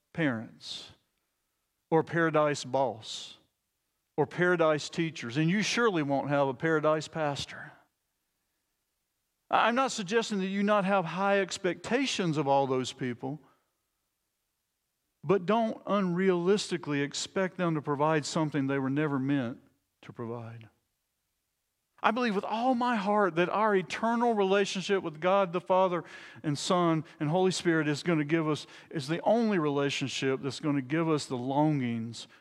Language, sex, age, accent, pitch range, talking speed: English, male, 50-69, American, 135-190 Hz, 145 wpm